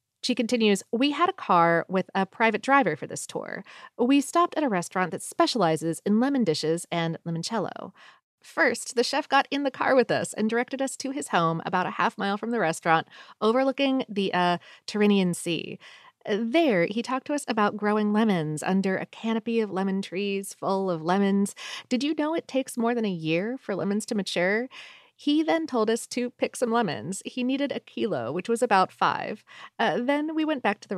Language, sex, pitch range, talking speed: English, female, 185-255 Hz, 205 wpm